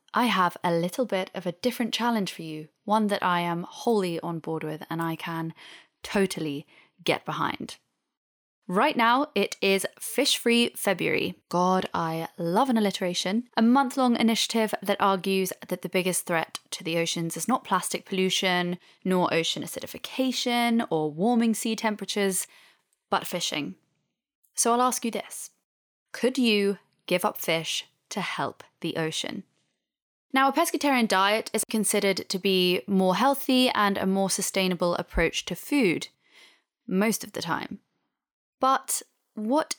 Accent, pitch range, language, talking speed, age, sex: British, 175-230 Hz, English, 150 wpm, 20-39, female